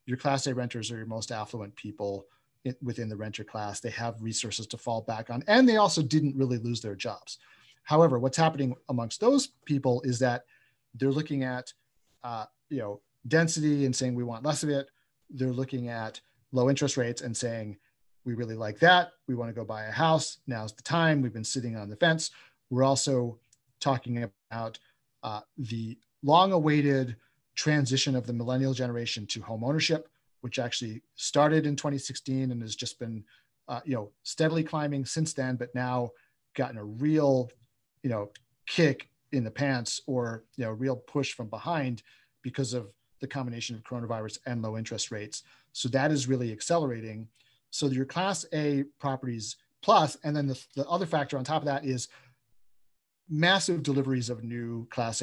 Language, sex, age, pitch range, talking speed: English, male, 40-59, 115-140 Hz, 180 wpm